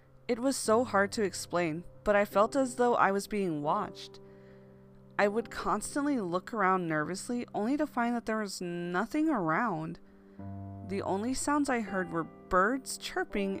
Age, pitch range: 20-39, 160-240 Hz